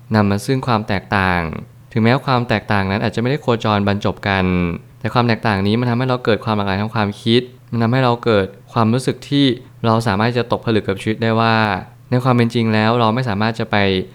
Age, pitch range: 20-39, 105-120 Hz